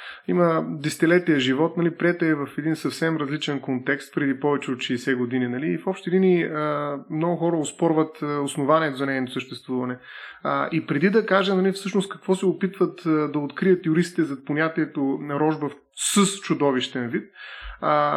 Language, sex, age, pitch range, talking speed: Bulgarian, male, 30-49, 145-185 Hz, 165 wpm